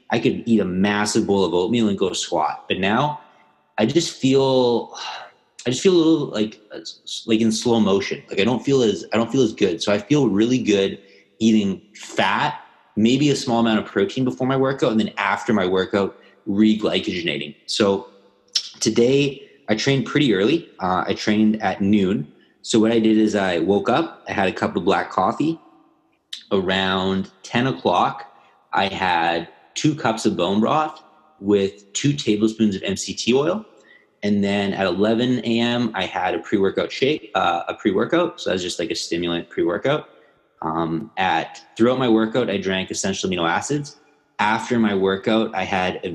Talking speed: 180 wpm